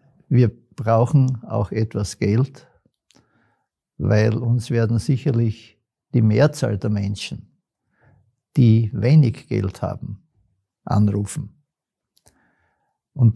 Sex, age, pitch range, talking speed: male, 60-79, 110-130 Hz, 85 wpm